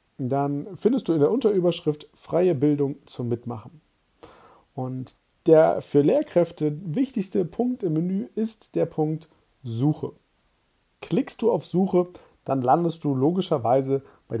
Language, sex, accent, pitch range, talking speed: German, male, German, 145-195 Hz, 130 wpm